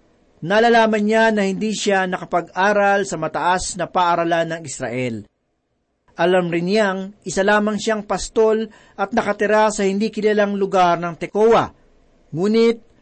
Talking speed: 130 wpm